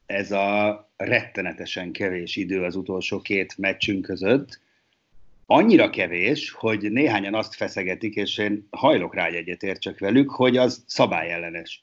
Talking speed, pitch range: 130 wpm, 95-120 Hz